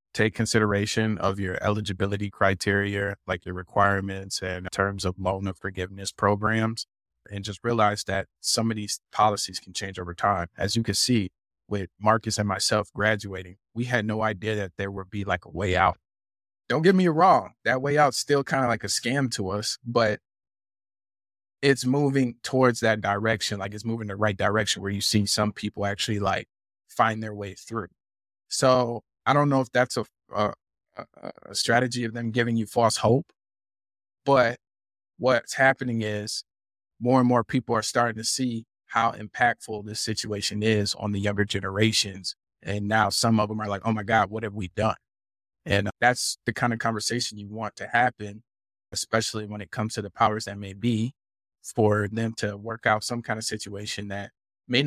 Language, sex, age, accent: English, male, 20-39, American